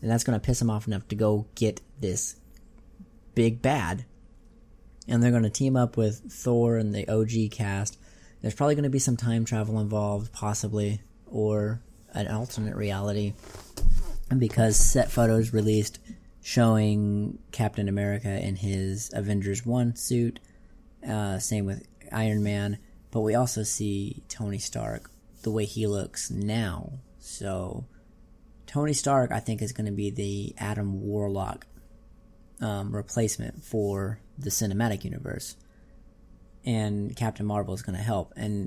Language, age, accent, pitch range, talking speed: English, 30-49, American, 100-120 Hz, 145 wpm